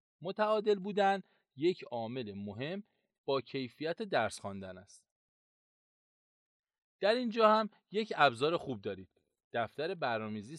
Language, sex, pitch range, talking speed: Persian, male, 120-195 Hz, 110 wpm